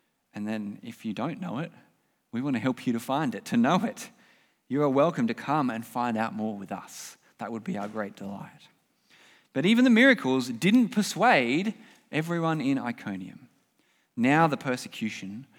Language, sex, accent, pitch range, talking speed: English, male, Australian, 120-195 Hz, 180 wpm